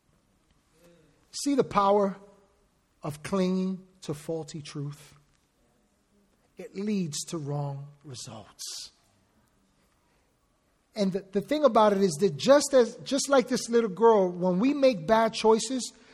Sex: male